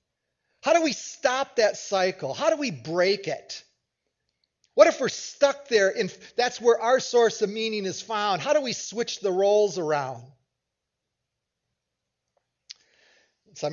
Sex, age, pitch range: male, 30-49, 175-230 Hz